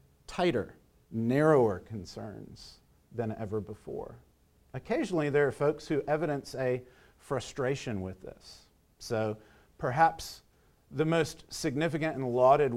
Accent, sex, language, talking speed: American, male, English, 110 wpm